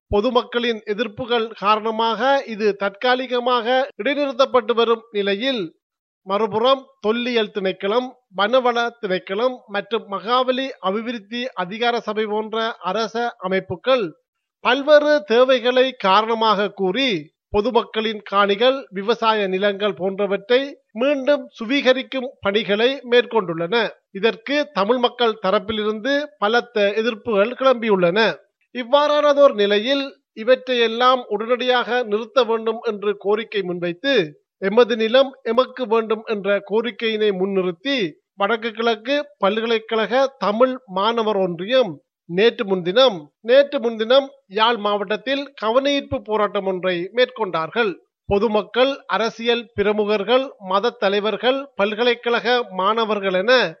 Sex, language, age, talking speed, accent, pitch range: male, Tamil, 30-49, 90 wpm, native, 205-255 Hz